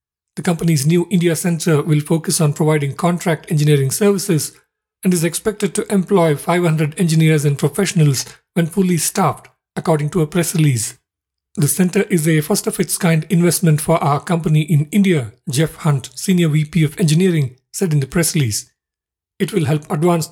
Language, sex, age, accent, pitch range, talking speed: English, male, 50-69, Indian, 150-180 Hz, 160 wpm